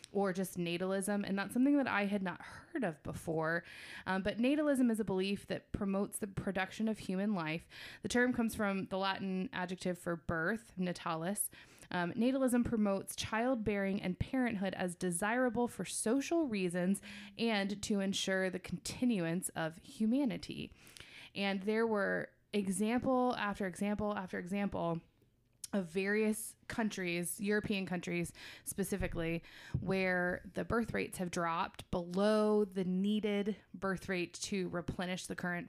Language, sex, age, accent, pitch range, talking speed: English, female, 20-39, American, 180-210 Hz, 140 wpm